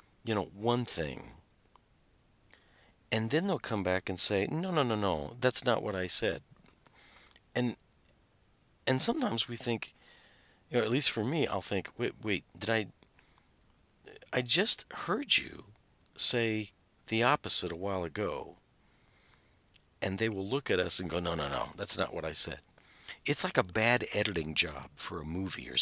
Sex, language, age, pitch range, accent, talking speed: male, English, 50-69, 90-120 Hz, American, 170 wpm